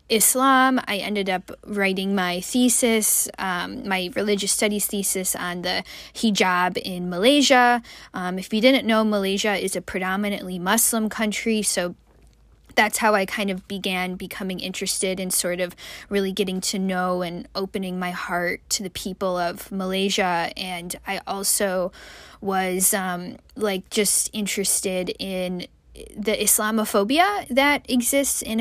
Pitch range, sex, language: 185-215 Hz, female, English